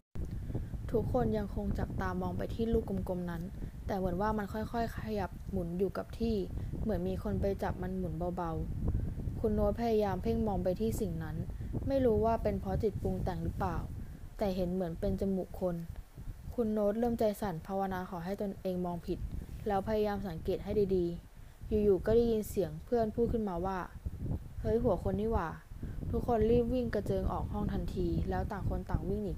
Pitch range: 160-210 Hz